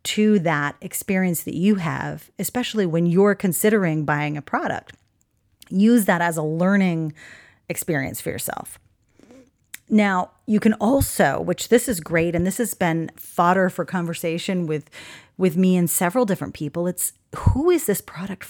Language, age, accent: English, 40-59, American